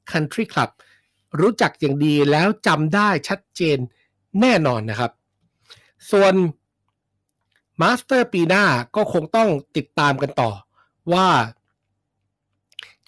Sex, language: male, Thai